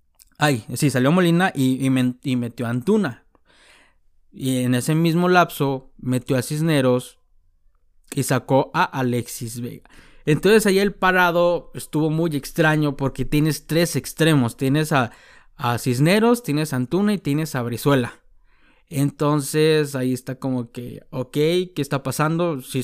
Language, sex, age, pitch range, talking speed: Spanish, male, 20-39, 130-160 Hz, 140 wpm